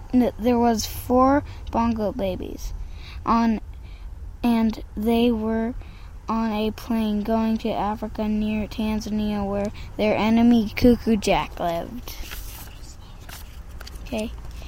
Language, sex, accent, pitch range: English, female, American, 200-235 Hz